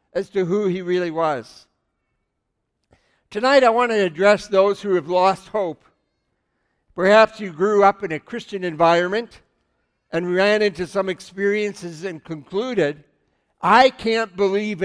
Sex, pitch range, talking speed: male, 180-210 Hz, 135 wpm